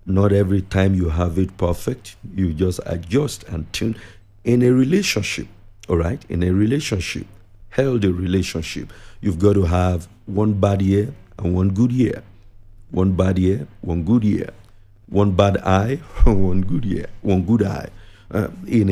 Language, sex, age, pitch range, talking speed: English, male, 50-69, 95-110 Hz, 155 wpm